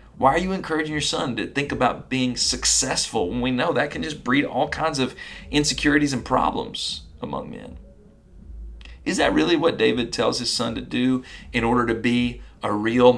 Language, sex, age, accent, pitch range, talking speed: English, male, 40-59, American, 110-130 Hz, 190 wpm